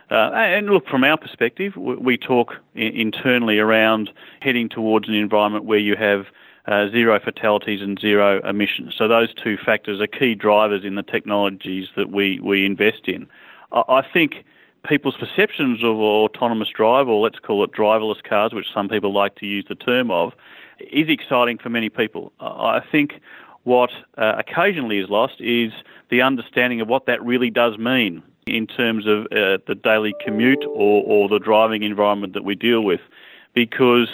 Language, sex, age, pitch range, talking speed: English, male, 40-59, 105-125 Hz, 170 wpm